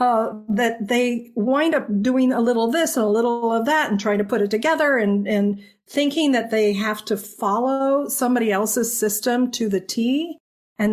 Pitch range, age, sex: 195-255 Hz, 50-69, female